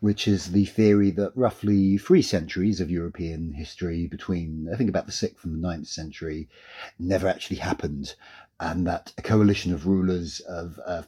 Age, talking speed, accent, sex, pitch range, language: 40-59, 175 wpm, British, male, 90-115 Hz, English